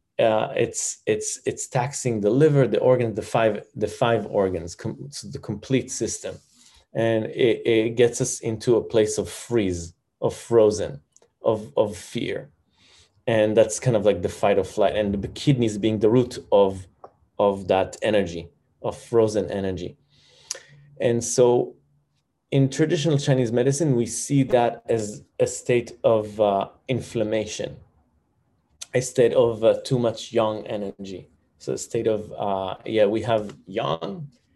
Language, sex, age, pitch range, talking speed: English, male, 30-49, 105-140 Hz, 150 wpm